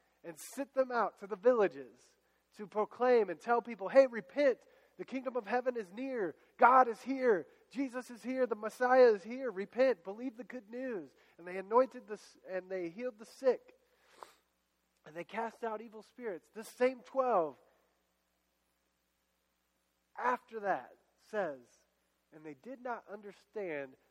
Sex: male